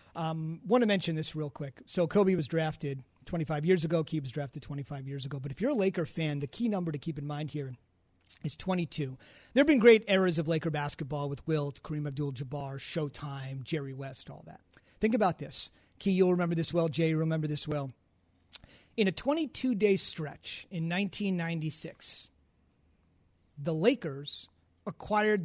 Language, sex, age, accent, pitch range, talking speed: English, male, 30-49, American, 145-210 Hz, 180 wpm